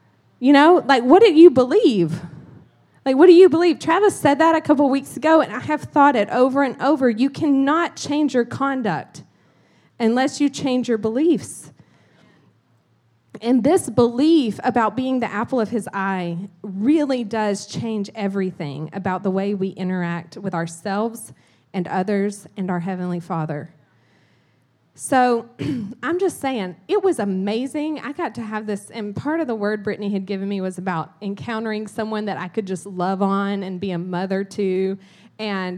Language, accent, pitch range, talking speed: English, American, 205-310 Hz, 170 wpm